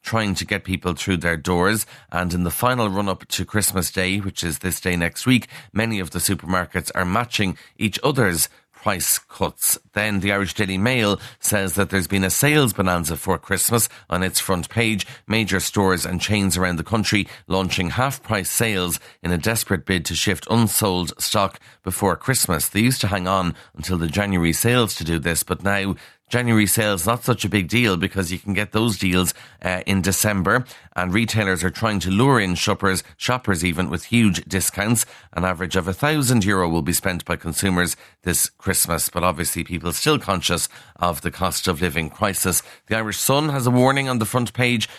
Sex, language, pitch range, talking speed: male, English, 90-110 Hz, 190 wpm